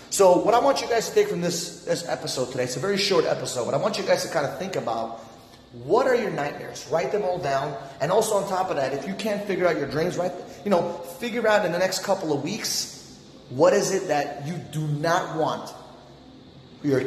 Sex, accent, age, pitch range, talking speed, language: male, American, 30-49, 140-175 Hz, 245 wpm, English